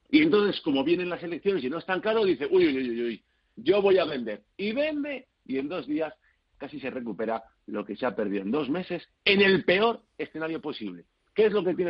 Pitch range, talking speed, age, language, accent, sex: 135-205 Hz, 235 wpm, 50-69, Spanish, Spanish, male